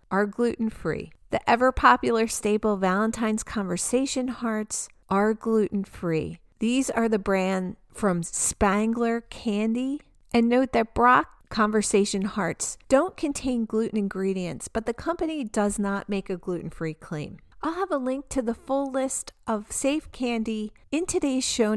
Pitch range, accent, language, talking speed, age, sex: 195-245 Hz, American, English, 140 wpm, 40-59, female